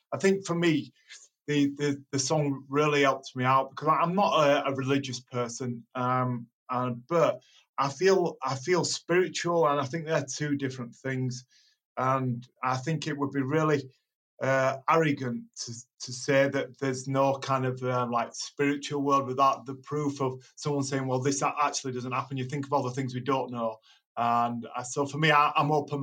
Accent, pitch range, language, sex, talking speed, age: British, 125-145 Hz, English, male, 190 wpm, 30-49